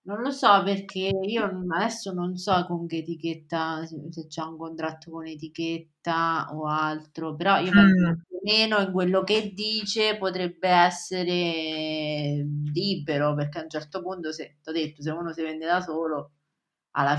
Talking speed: 160 wpm